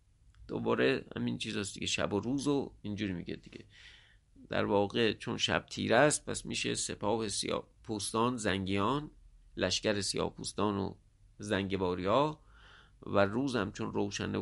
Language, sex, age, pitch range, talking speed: English, male, 50-69, 100-140 Hz, 135 wpm